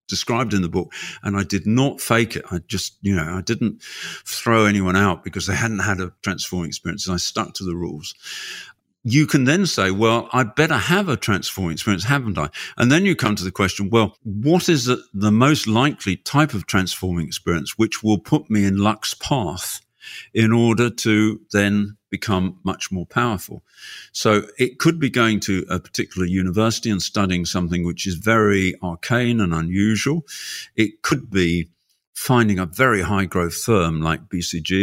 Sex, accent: male, British